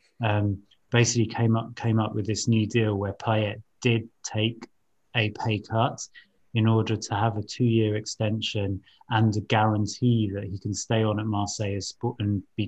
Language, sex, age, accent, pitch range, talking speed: English, male, 20-39, British, 100-110 Hz, 170 wpm